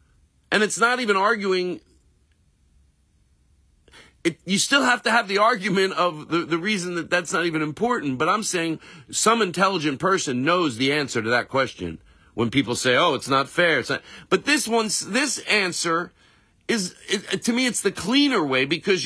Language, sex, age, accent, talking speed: English, male, 50-69, American, 180 wpm